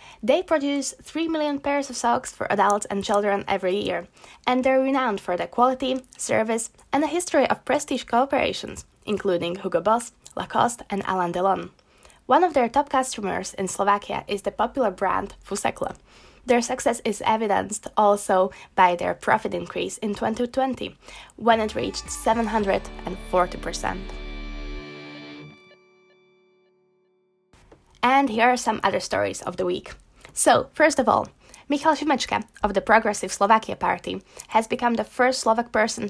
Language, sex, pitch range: Slovak, female, 190-250 Hz